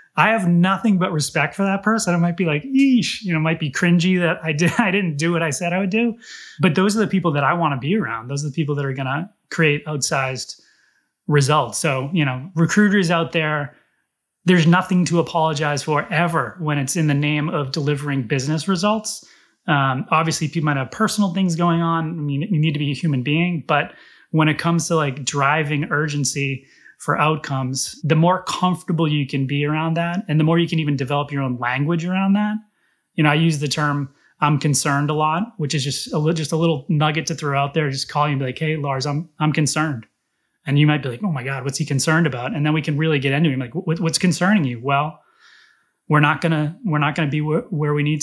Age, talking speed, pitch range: 30-49, 235 wpm, 145-175 Hz